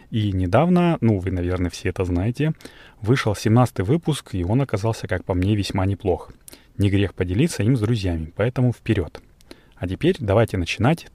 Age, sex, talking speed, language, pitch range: 30-49, male, 165 wpm, Russian, 95-120 Hz